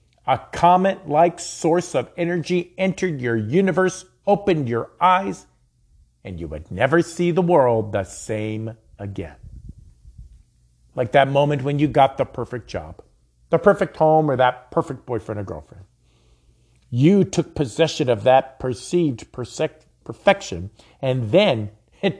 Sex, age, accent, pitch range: male, 50-69, American, 115-170 Hz